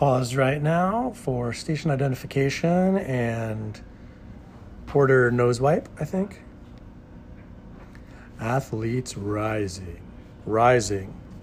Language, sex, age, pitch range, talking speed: English, male, 40-59, 115-155 Hz, 75 wpm